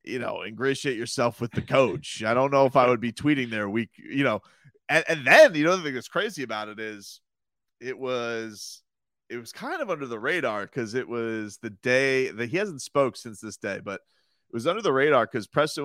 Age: 30-49